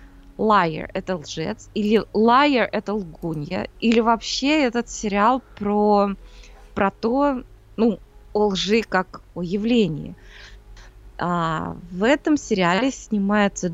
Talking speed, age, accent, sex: 120 wpm, 20-39, native, female